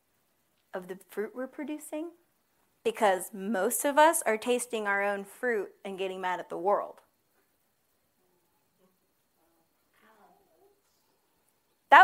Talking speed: 105 wpm